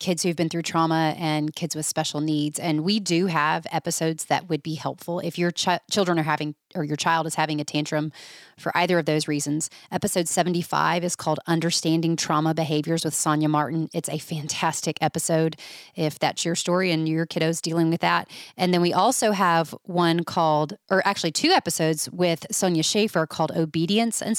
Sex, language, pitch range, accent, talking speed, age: female, English, 155-185 Hz, American, 190 wpm, 30-49